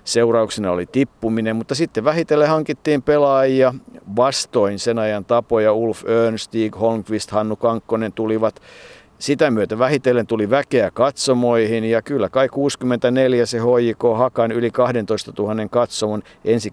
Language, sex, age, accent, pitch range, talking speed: Finnish, male, 50-69, native, 105-120 Hz, 125 wpm